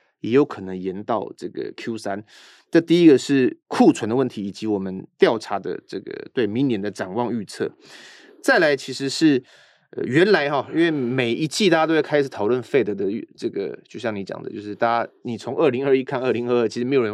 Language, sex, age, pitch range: Chinese, male, 30-49, 115-165 Hz